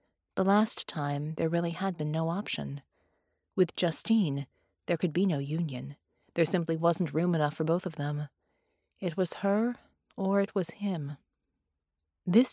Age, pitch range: 30-49, 150-225 Hz